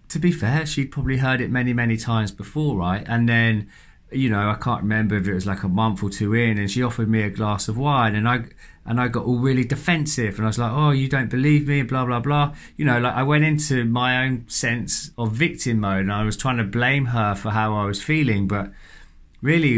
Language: English